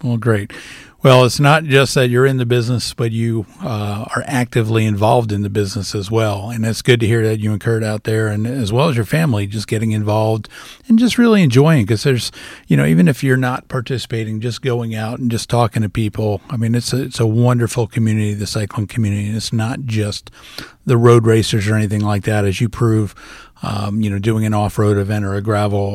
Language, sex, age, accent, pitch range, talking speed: English, male, 40-59, American, 105-125 Hz, 225 wpm